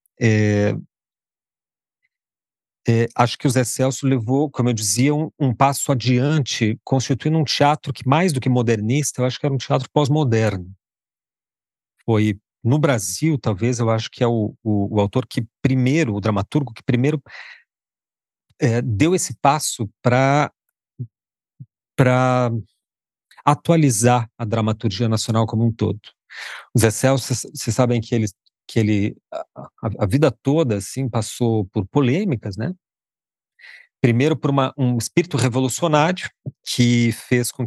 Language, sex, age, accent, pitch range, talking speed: Portuguese, male, 40-59, Brazilian, 115-140 Hz, 135 wpm